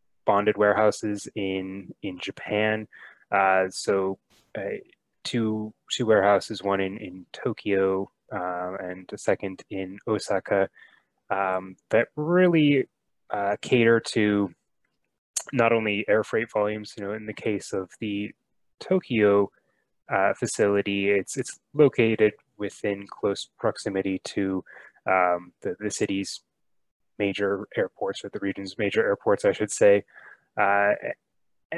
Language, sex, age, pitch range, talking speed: English, male, 20-39, 95-110 Hz, 120 wpm